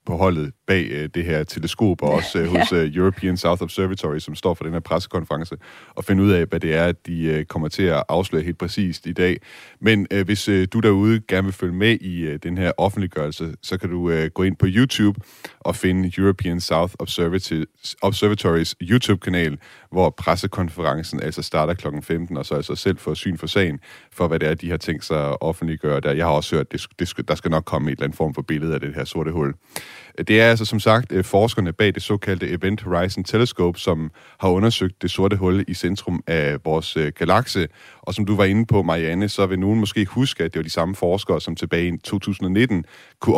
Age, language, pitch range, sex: 30-49, Danish, 80-100 Hz, male